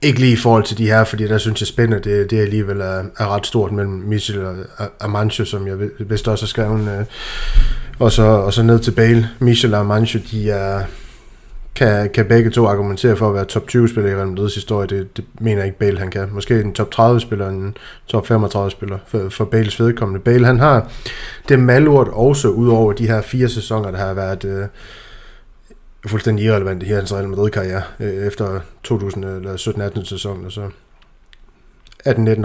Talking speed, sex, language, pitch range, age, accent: 190 wpm, male, Danish, 100-120 Hz, 20-39, native